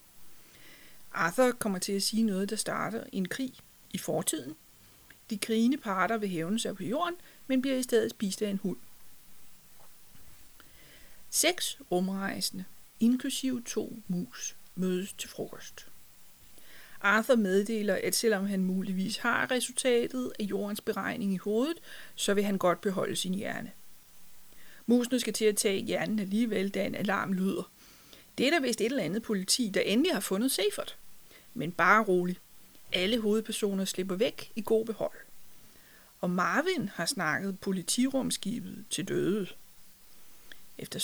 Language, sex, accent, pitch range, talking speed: Danish, female, native, 195-235 Hz, 145 wpm